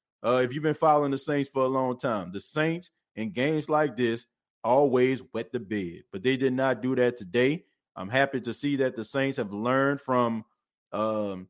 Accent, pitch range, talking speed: American, 110-135 Hz, 205 wpm